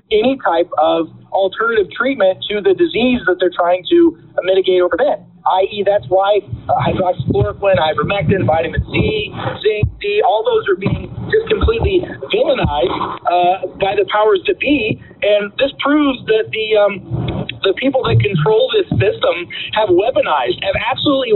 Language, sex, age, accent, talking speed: English, male, 40-59, American, 155 wpm